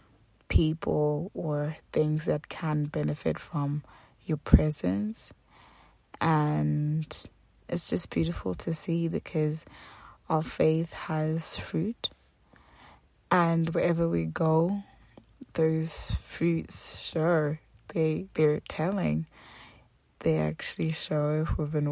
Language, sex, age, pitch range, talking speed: English, female, 20-39, 145-165 Hz, 100 wpm